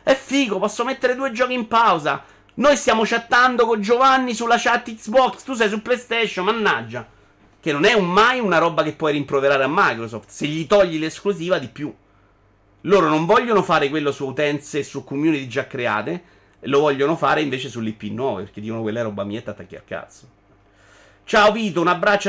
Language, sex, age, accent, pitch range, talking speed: Italian, male, 30-49, native, 110-175 Hz, 190 wpm